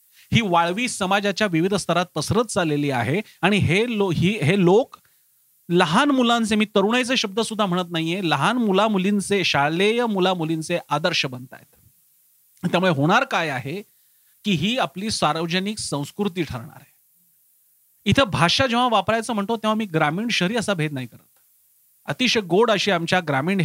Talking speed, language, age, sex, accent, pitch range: 105 wpm, Marathi, 40-59, male, native, 170-225 Hz